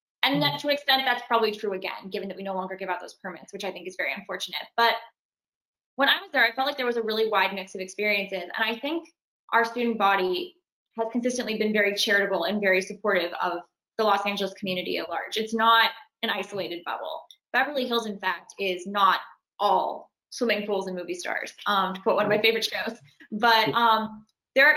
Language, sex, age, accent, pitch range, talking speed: English, female, 20-39, American, 190-230 Hz, 215 wpm